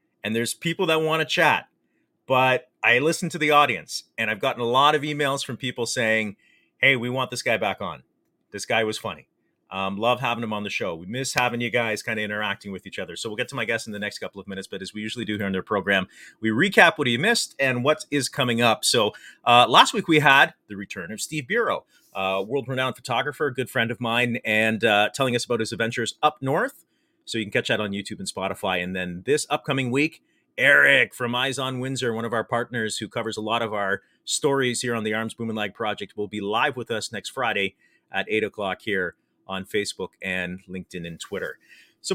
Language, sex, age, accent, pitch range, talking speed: English, male, 30-49, American, 105-135 Hz, 235 wpm